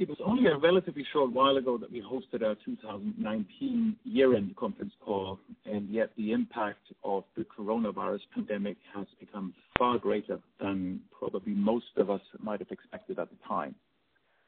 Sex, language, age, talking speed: male, English, 50-69, 160 wpm